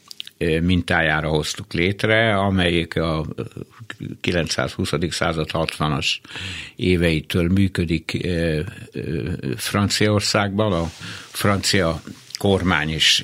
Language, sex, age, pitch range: Hungarian, male, 60-79, 85-105 Hz